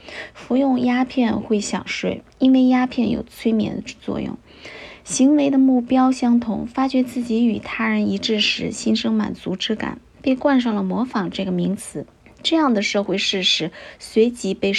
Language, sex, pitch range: Chinese, female, 205-250 Hz